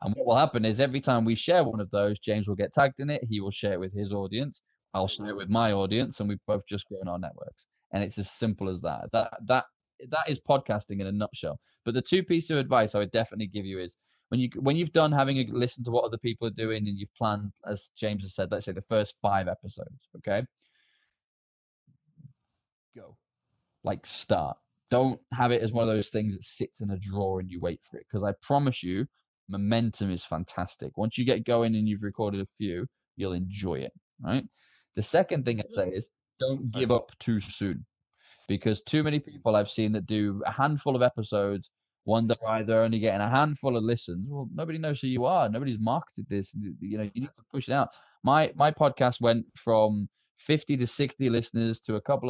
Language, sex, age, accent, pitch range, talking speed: English, male, 10-29, British, 100-125 Hz, 225 wpm